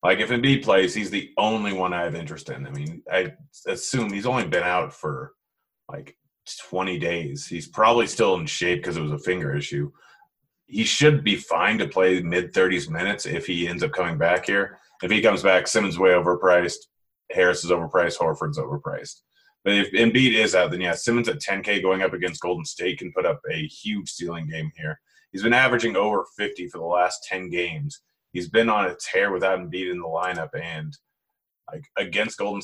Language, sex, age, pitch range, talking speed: English, male, 30-49, 85-115 Hz, 200 wpm